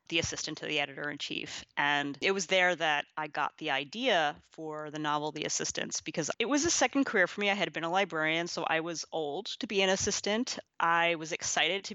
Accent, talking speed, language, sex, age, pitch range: American, 230 wpm, English, female, 30-49, 155-185 Hz